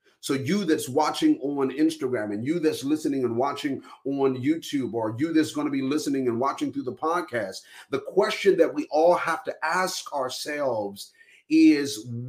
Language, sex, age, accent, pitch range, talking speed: English, male, 40-59, American, 165-265 Hz, 175 wpm